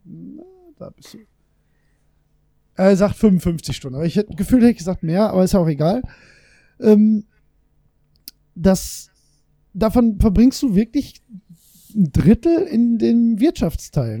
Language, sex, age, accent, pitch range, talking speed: German, male, 20-39, German, 180-225 Hz, 125 wpm